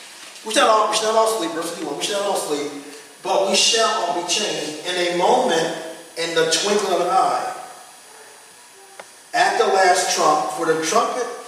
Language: English